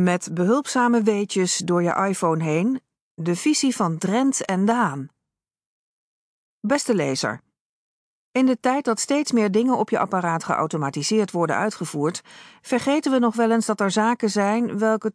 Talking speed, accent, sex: 150 wpm, Dutch, female